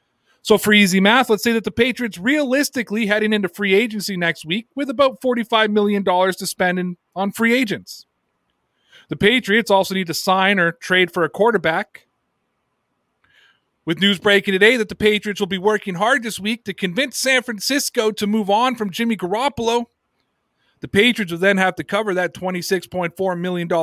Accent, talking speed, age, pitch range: American, 175 wpm, 30-49, 175-220 Hz